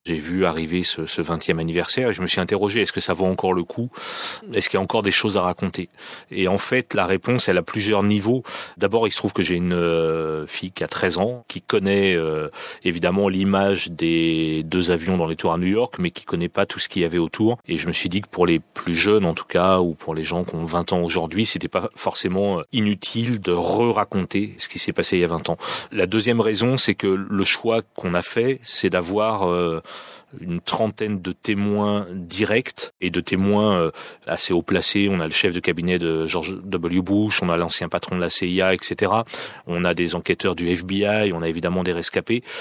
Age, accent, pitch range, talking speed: 30-49, French, 85-105 Hz, 230 wpm